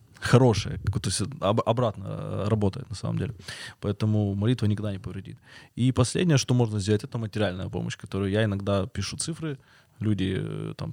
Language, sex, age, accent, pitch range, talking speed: Russian, male, 20-39, native, 100-125 Hz, 160 wpm